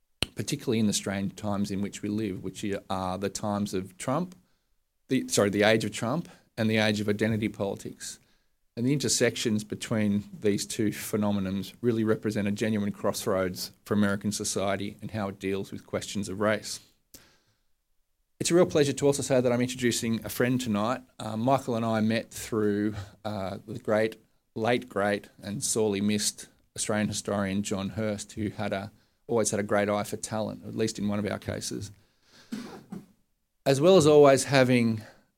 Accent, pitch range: Australian, 100-110 Hz